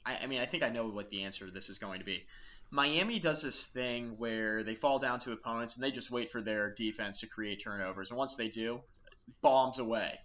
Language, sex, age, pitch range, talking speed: English, male, 20-39, 110-130 Hz, 240 wpm